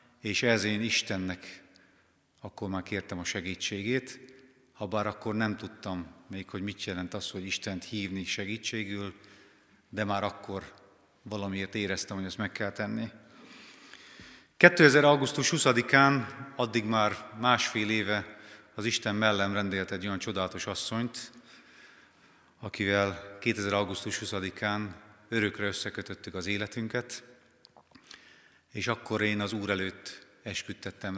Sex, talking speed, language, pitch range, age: male, 120 wpm, Hungarian, 95-115 Hz, 30-49